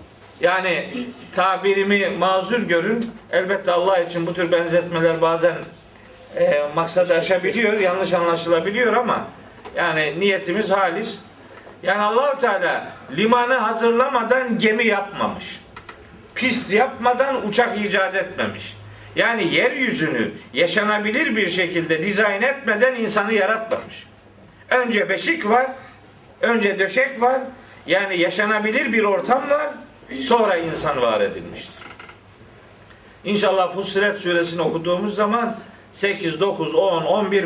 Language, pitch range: Turkish, 170-235 Hz